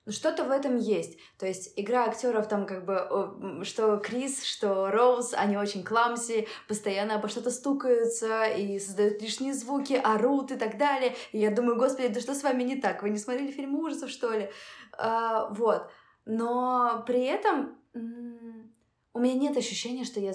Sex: female